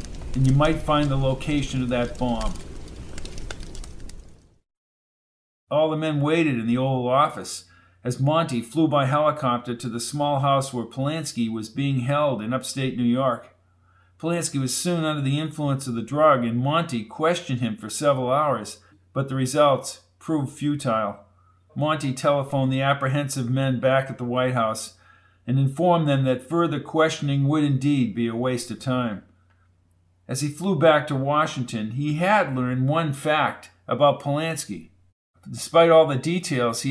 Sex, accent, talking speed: male, American, 160 wpm